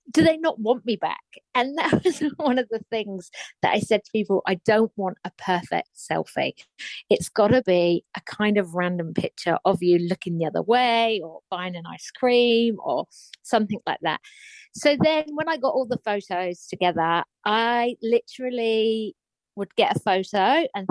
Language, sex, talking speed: English, female, 185 wpm